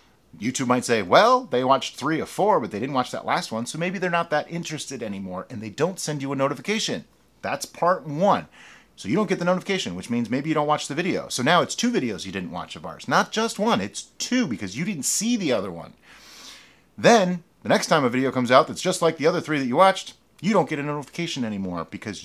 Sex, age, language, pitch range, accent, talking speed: male, 40-59, English, 120-175 Hz, American, 250 wpm